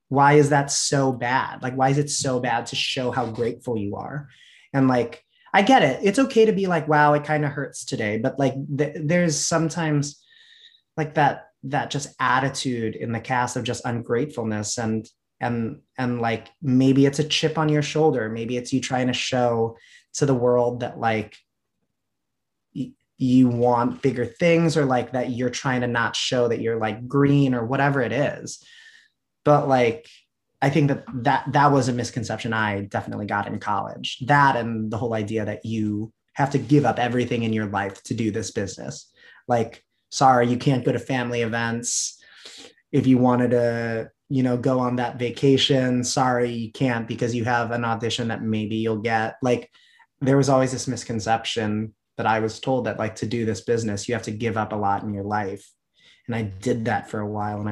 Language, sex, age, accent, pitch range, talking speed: English, male, 20-39, American, 115-140 Hz, 200 wpm